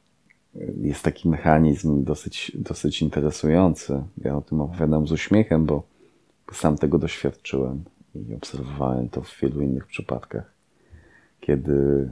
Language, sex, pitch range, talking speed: Polish, male, 65-75 Hz, 120 wpm